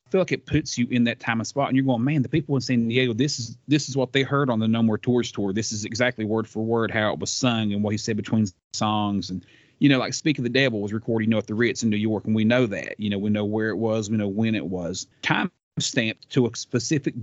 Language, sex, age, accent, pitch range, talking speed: English, male, 30-49, American, 110-140 Hz, 300 wpm